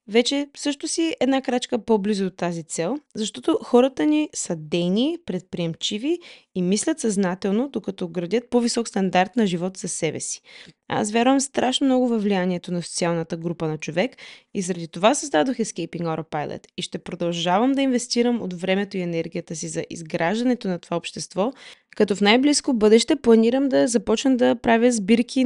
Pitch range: 180-245 Hz